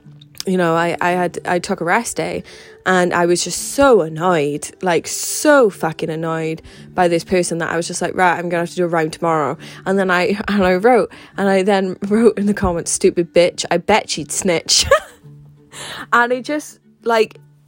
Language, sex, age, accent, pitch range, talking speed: English, female, 20-39, British, 170-210 Hz, 205 wpm